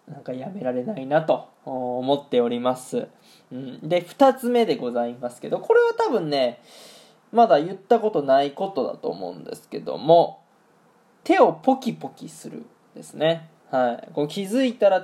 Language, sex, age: Japanese, male, 20-39